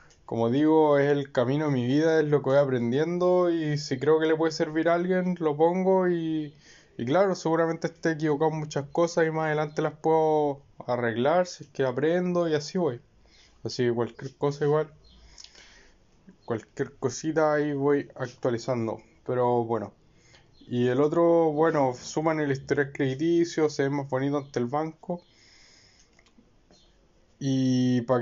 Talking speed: 155 wpm